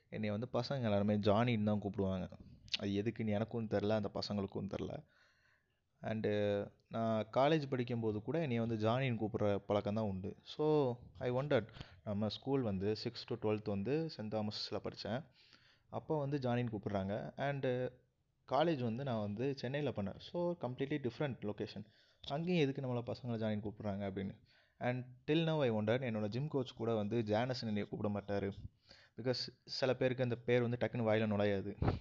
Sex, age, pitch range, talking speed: male, 20-39, 105-125 Hz, 150 wpm